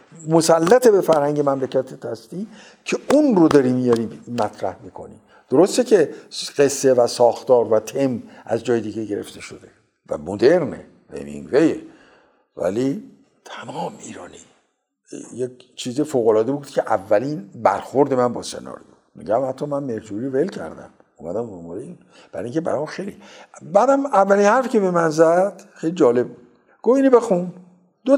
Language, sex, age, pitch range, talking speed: Persian, male, 60-79, 120-195 Hz, 135 wpm